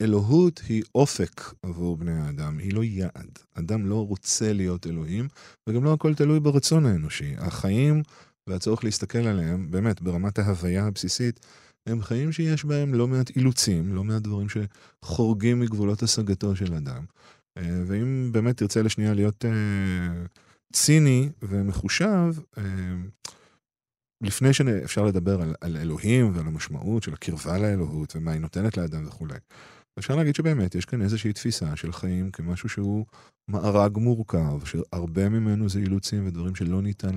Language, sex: Hebrew, male